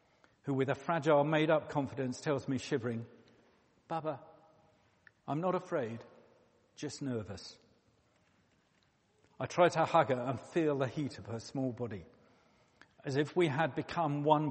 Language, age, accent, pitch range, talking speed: English, 50-69, British, 110-150 Hz, 140 wpm